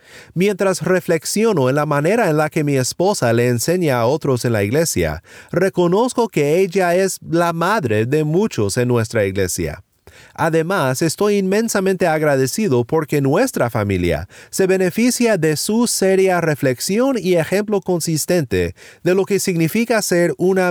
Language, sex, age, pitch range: Spanish, male, 30-49, 125-190 Hz